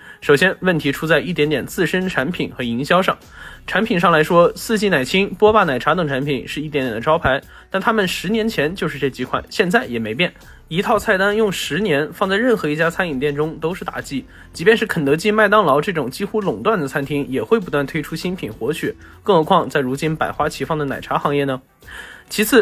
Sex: male